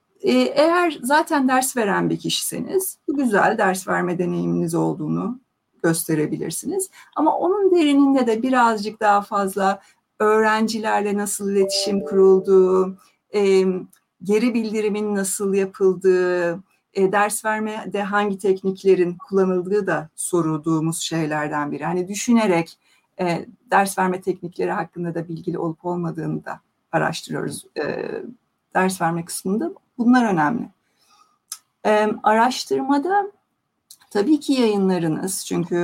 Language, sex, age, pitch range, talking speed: Turkish, female, 60-79, 180-220 Hz, 100 wpm